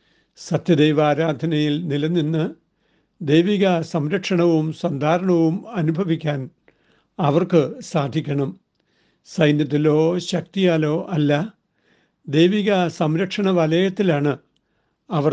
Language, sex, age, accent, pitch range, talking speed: Malayalam, male, 60-79, native, 145-170 Hz, 60 wpm